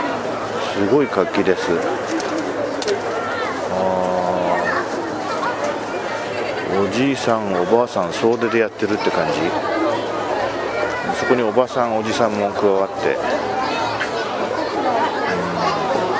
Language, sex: Japanese, male